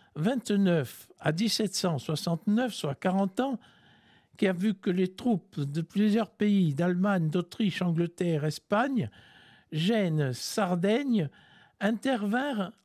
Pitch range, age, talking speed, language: 165-215 Hz, 60-79, 105 wpm, French